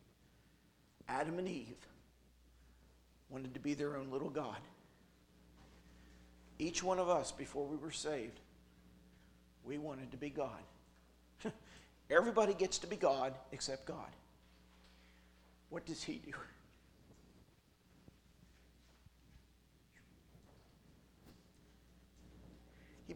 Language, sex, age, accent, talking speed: English, male, 50-69, American, 90 wpm